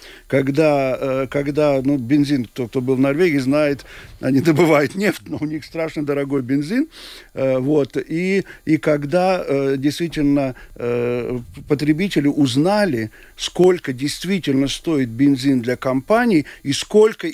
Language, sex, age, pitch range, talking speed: Russian, male, 50-69, 135-170 Hz, 115 wpm